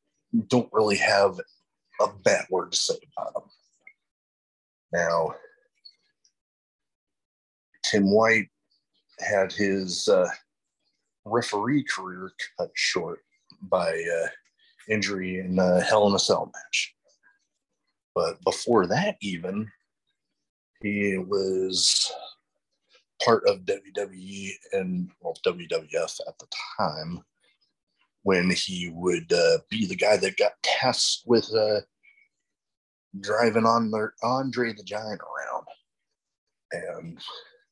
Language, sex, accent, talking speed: English, male, American, 100 wpm